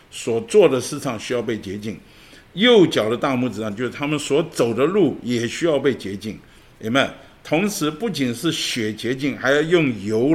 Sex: male